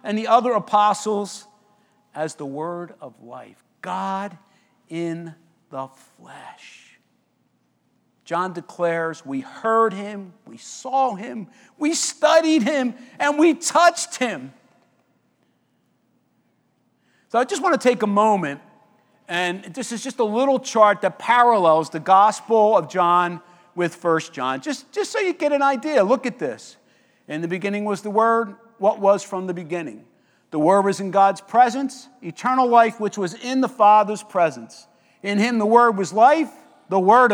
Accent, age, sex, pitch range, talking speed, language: American, 50-69, male, 175-235 Hz, 155 wpm, English